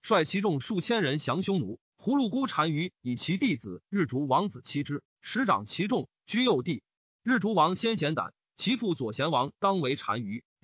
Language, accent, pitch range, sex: Chinese, native, 150-225 Hz, male